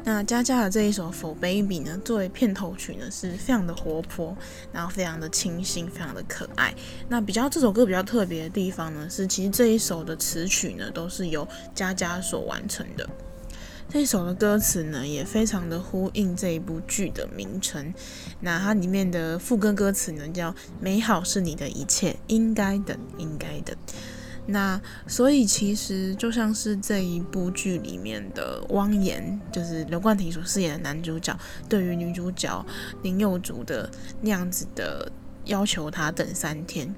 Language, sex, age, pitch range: Chinese, female, 20-39, 170-210 Hz